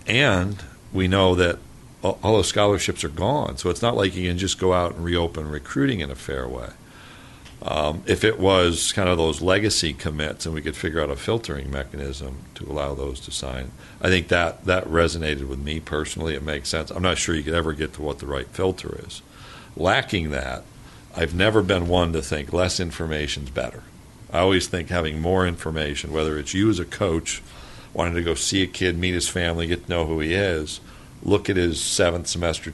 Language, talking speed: English, 210 wpm